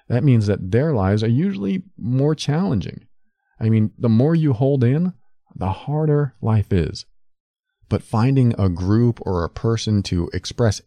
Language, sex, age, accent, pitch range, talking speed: English, male, 40-59, American, 100-140 Hz, 160 wpm